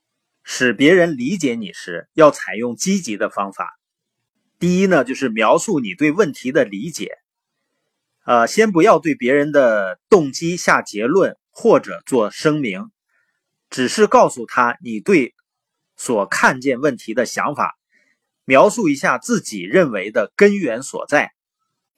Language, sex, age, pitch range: Chinese, male, 30-49, 160-230 Hz